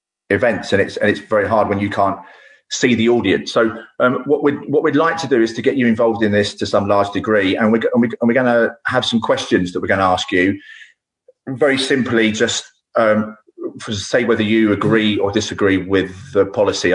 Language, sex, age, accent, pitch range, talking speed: English, male, 30-49, British, 95-135 Hz, 210 wpm